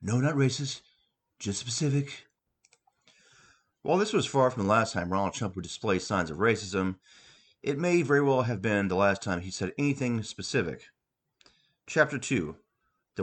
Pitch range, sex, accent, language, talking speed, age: 100-140 Hz, male, American, English, 165 wpm, 30-49